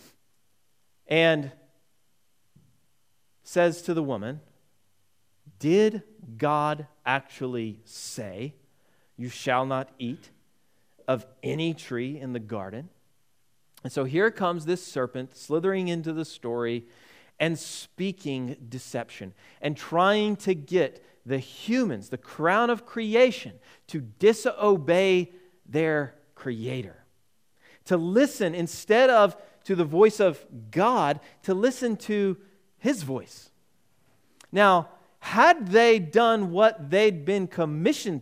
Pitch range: 135-205 Hz